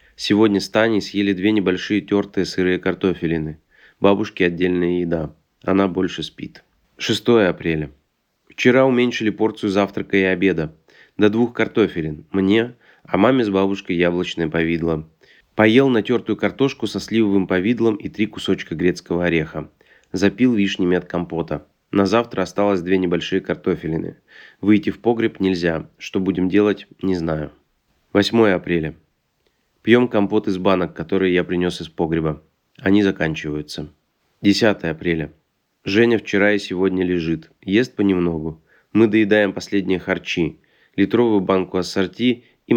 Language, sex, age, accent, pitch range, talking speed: Russian, male, 30-49, native, 85-105 Hz, 130 wpm